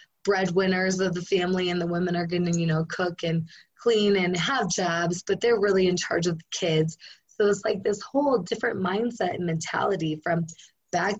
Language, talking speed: English, 195 wpm